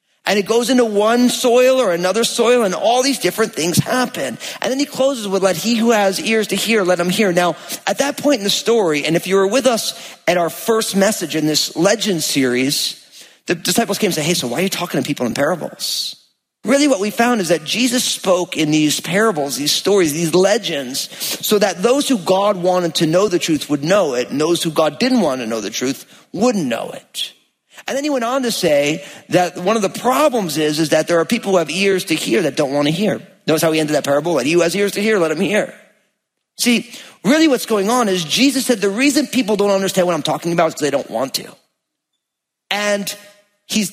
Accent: American